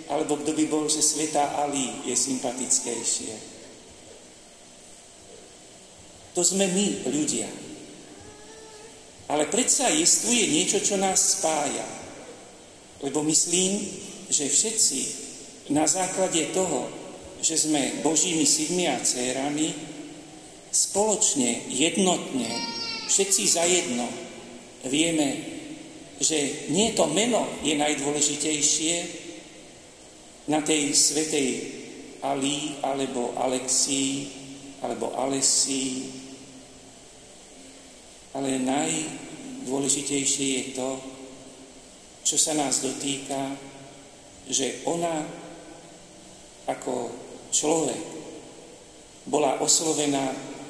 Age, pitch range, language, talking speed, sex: 50-69, 135-160 Hz, Slovak, 80 wpm, male